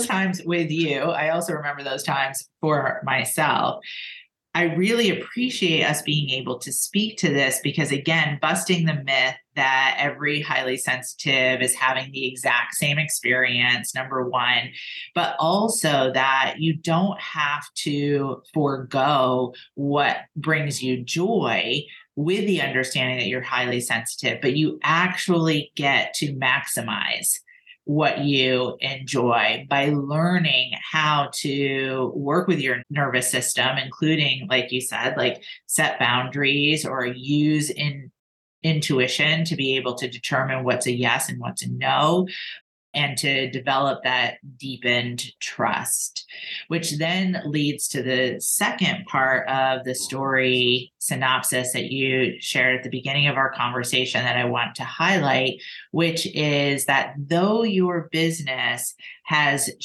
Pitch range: 130-160 Hz